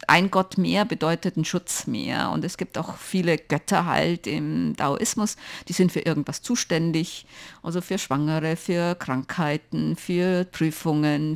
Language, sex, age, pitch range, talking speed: German, female, 50-69, 155-190 Hz, 150 wpm